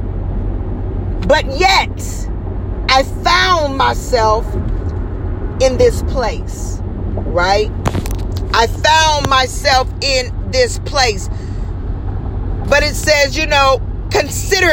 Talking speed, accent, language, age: 85 wpm, American, English, 40-59